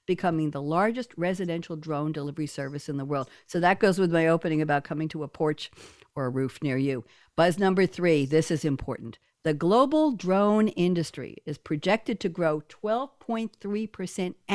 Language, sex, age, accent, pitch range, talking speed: English, female, 60-79, American, 155-215 Hz, 170 wpm